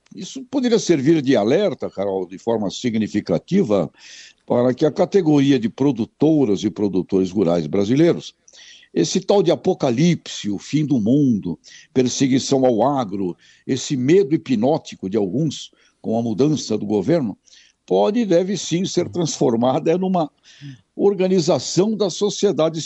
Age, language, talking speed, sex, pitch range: 60-79, Portuguese, 135 wpm, male, 115-170 Hz